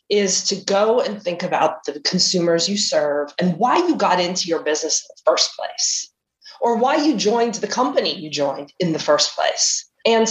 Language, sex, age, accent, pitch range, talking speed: English, female, 20-39, American, 170-215 Hz, 200 wpm